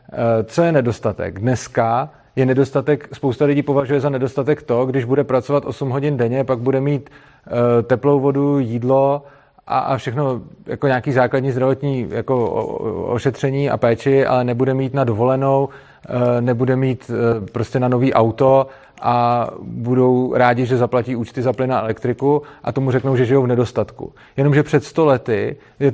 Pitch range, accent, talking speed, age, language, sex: 130-150 Hz, native, 150 wpm, 30-49, Czech, male